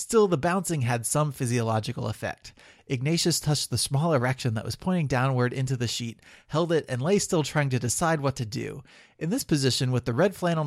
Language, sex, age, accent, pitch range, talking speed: English, male, 30-49, American, 125-160 Hz, 210 wpm